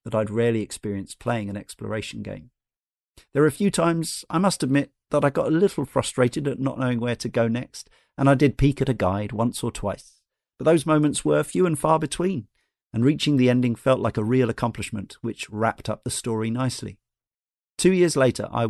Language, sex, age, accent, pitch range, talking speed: English, male, 40-59, British, 110-140 Hz, 210 wpm